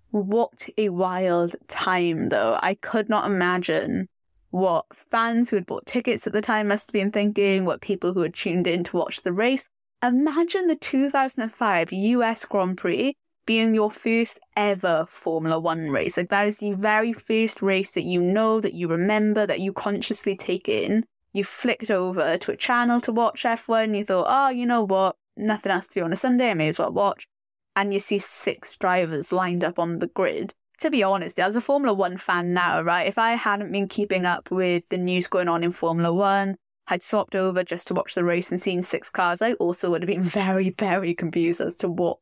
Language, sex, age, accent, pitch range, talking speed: English, female, 10-29, British, 180-235 Hz, 210 wpm